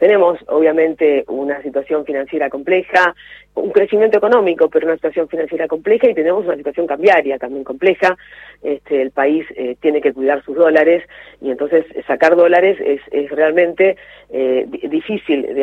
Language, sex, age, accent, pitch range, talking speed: Spanish, female, 40-59, Argentinian, 150-185 Hz, 150 wpm